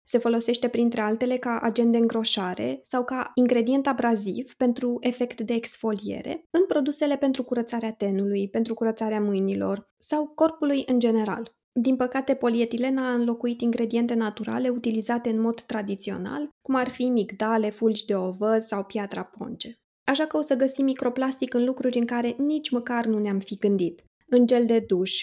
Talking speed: 165 wpm